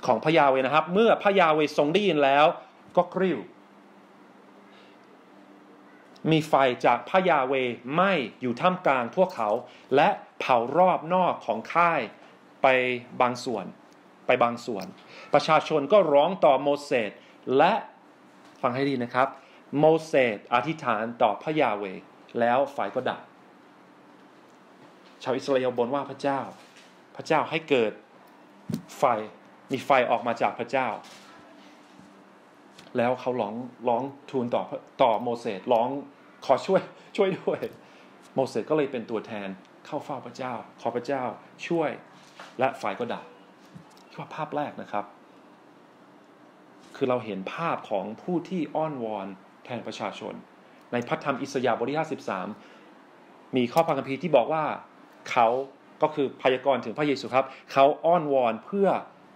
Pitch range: 125-160 Hz